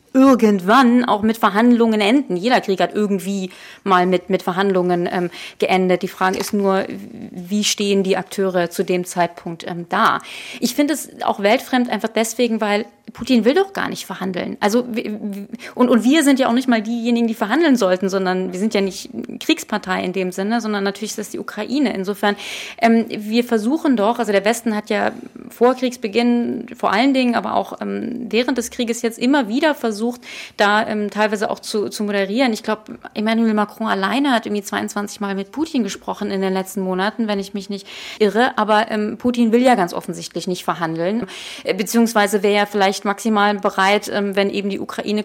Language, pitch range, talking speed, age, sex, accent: German, 200-240 Hz, 195 wpm, 30-49, female, German